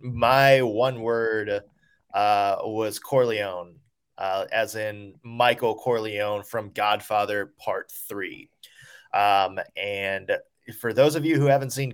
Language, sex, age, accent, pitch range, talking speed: English, male, 20-39, American, 110-135 Hz, 120 wpm